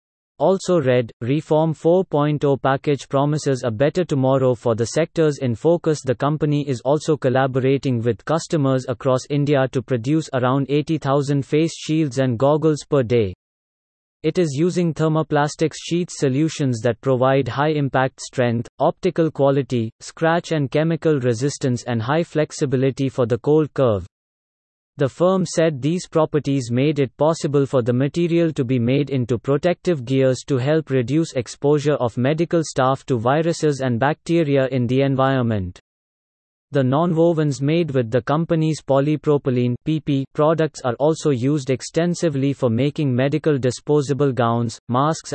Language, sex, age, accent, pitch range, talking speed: English, male, 30-49, Indian, 130-155 Hz, 140 wpm